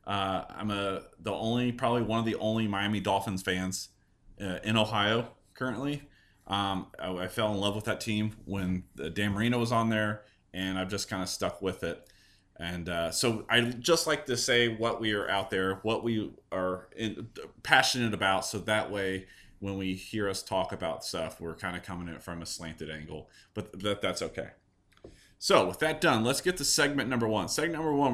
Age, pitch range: 30-49, 95-125 Hz